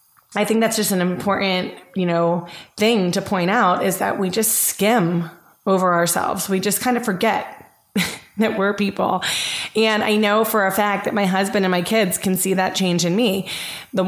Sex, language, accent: female, English, American